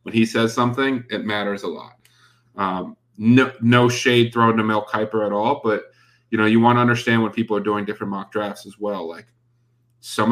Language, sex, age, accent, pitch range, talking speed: English, male, 30-49, American, 105-120 Hz, 210 wpm